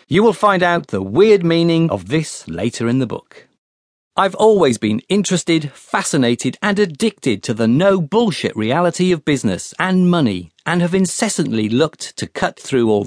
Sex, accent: male, British